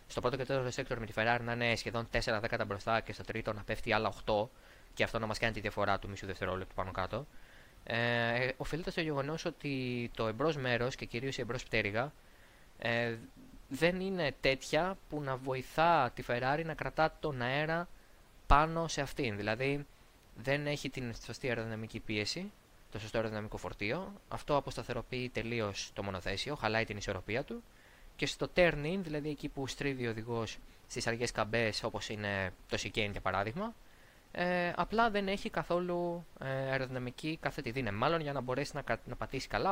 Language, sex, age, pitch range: Greek, male, 20-39, 115-160 Hz